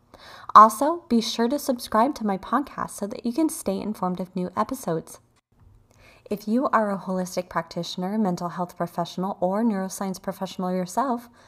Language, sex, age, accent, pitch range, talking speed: English, female, 20-39, American, 180-225 Hz, 155 wpm